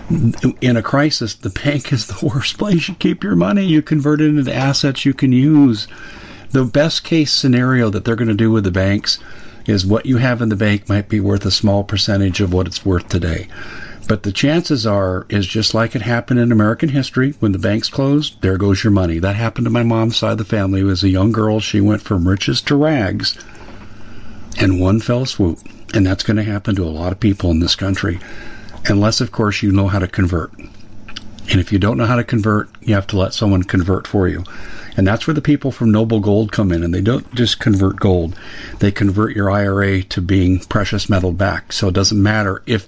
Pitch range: 100-120 Hz